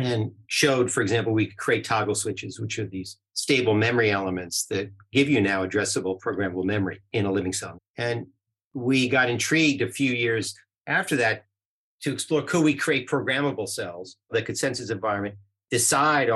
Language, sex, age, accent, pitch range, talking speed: English, male, 50-69, American, 100-130 Hz, 175 wpm